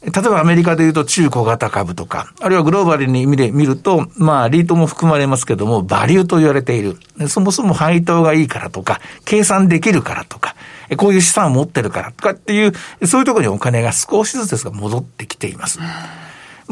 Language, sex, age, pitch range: Japanese, male, 60-79, 130-190 Hz